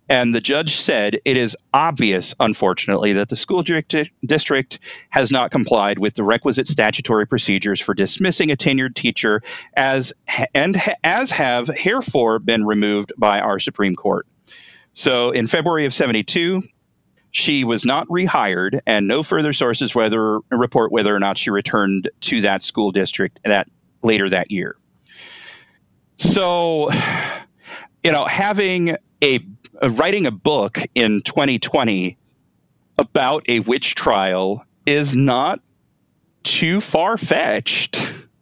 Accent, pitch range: American, 105-150 Hz